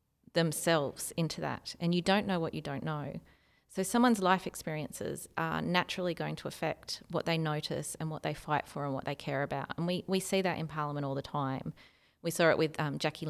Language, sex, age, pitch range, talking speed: English, female, 30-49, 140-165 Hz, 220 wpm